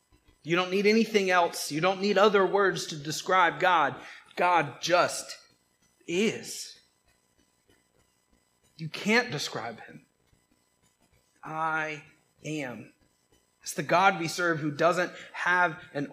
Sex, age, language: male, 30-49, English